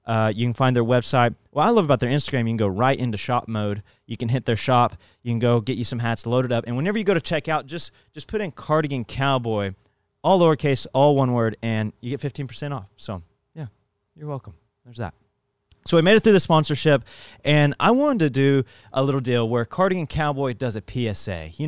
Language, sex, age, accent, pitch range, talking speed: English, male, 20-39, American, 105-150 Hz, 235 wpm